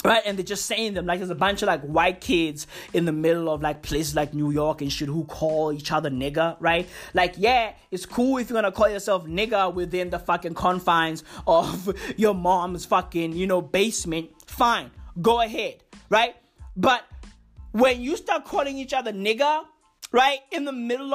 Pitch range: 180-250 Hz